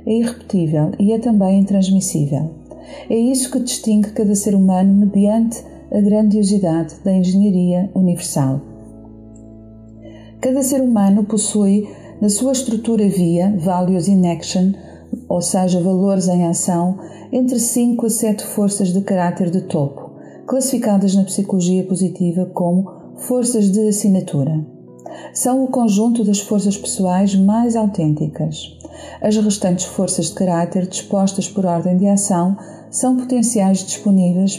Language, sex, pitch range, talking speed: Portuguese, female, 180-215 Hz, 125 wpm